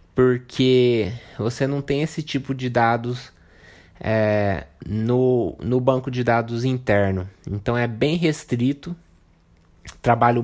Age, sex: 20-39, male